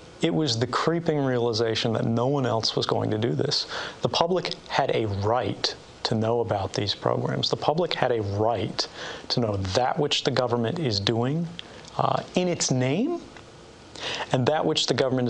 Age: 30-49